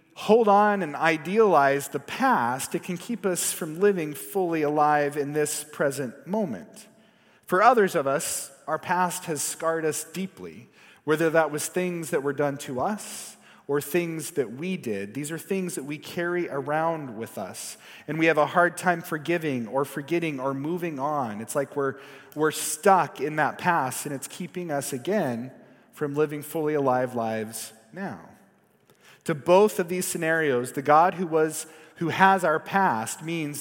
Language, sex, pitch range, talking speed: English, male, 145-180 Hz, 170 wpm